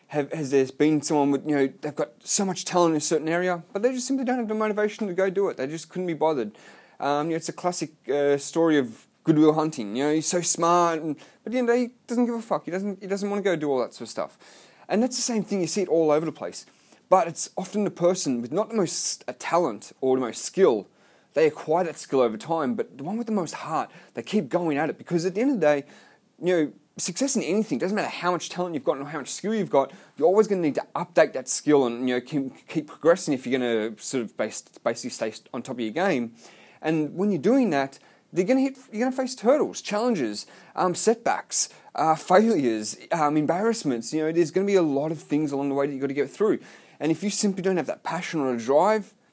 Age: 30-49